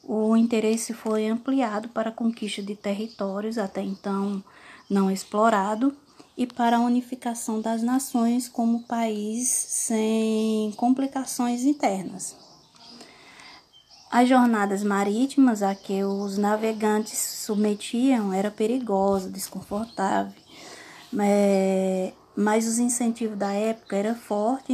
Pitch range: 210-245 Hz